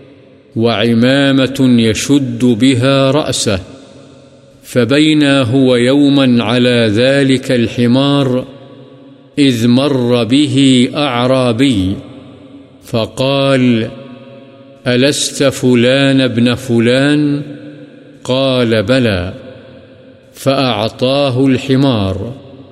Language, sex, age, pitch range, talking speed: Urdu, male, 50-69, 125-135 Hz, 60 wpm